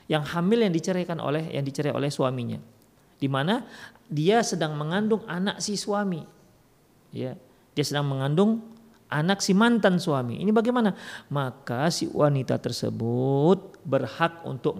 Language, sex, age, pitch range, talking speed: Indonesian, male, 40-59, 125-180 Hz, 135 wpm